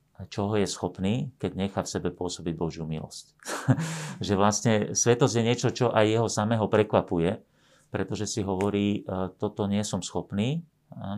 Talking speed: 145 wpm